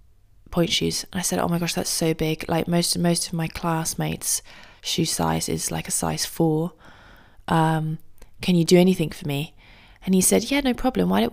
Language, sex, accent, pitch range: English, female, British, 150-195 Hz